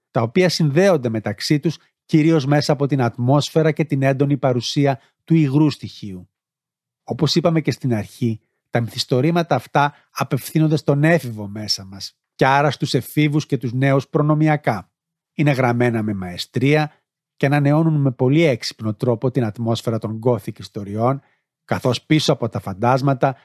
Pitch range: 120-150 Hz